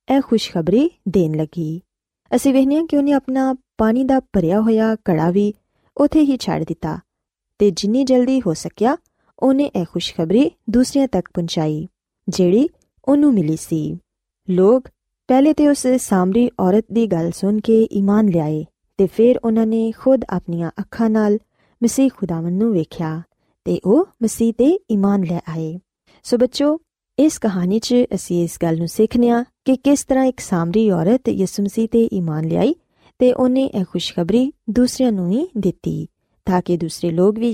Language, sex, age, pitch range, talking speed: Punjabi, female, 20-39, 175-250 Hz, 135 wpm